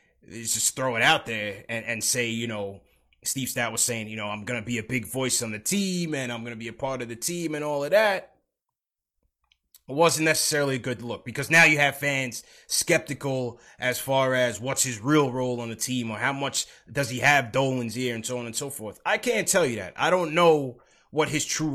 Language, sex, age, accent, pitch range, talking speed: English, male, 20-39, American, 125-185 Hz, 245 wpm